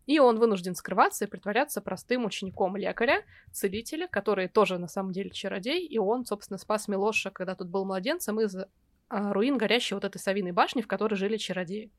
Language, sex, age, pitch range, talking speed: Russian, female, 20-39, 195-230 Hz, 180 wpm